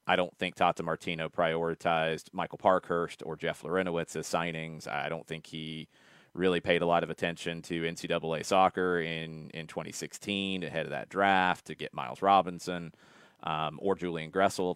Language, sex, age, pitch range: English, male, 30-49, 80-95 Hz